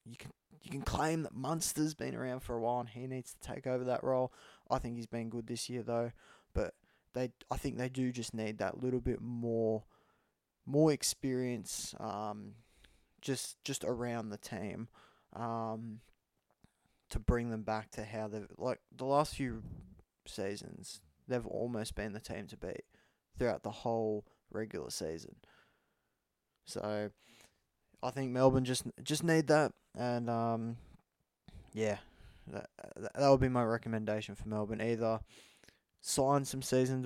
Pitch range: 110-130 Hz